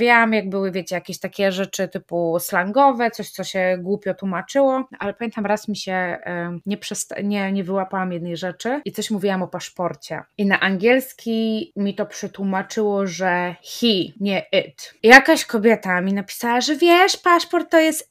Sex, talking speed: female, 170 wpm